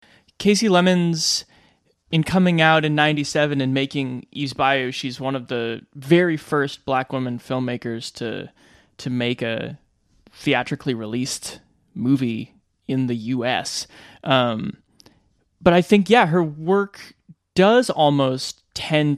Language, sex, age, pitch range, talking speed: English, male, 20-39, 125-155 Hz, 125 wpm